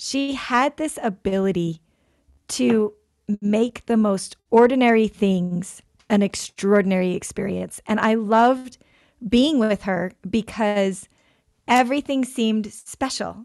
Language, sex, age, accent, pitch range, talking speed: English, female, 40-59, American, 205-245 Hz, 105 wpm